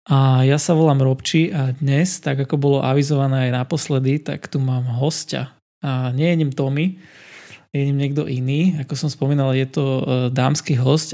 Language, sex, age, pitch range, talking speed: Slovak, male, 20-39, 130-150 Hz, 180 wpm